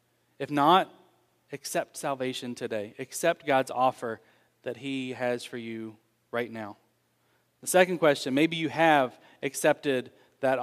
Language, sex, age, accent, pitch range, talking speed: English, male, 30-49, American, 125-145 Hz, 130 wpm